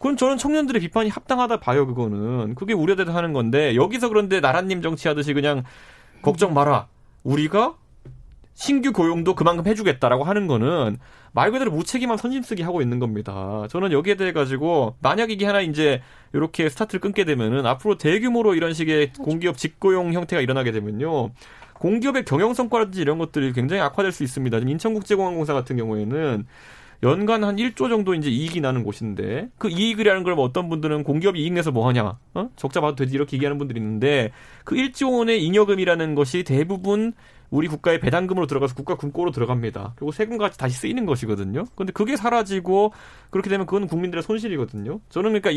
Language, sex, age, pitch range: Korean, male, 30-49, 135-205 Hz